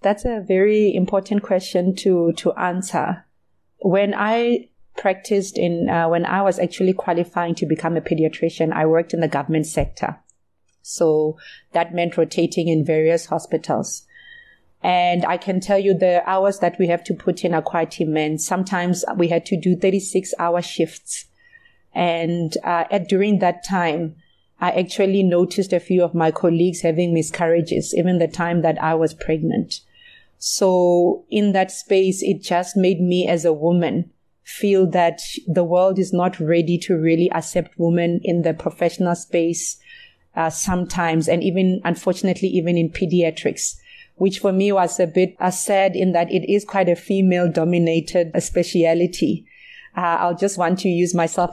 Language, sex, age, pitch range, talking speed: English, female, 30-49, 170-190 Hz, 160 wpm